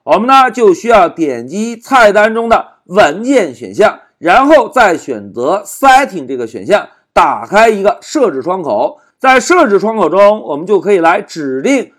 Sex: male